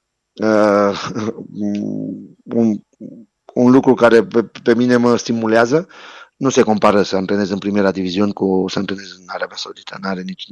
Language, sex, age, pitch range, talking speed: Romanian, male, 30-49, 100-125 Hz, 155 wpm